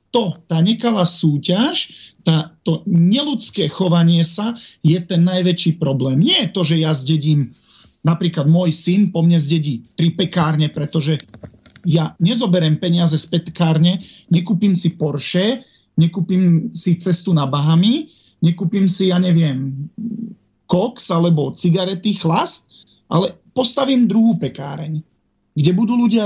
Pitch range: 160-200 Hz